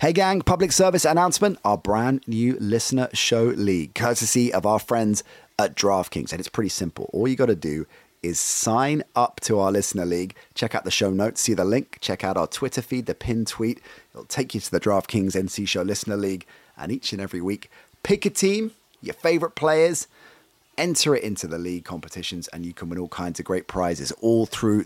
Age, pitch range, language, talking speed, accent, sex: 30-49, 95-125 Hz, English, 210 wpm, British, male